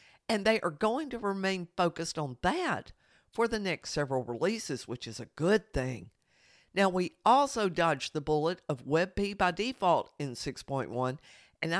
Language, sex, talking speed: English, female, 165 wpm